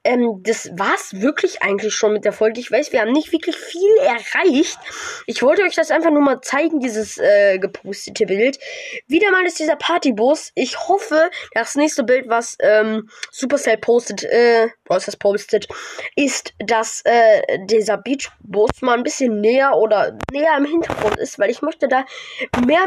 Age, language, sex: 20-39, German, female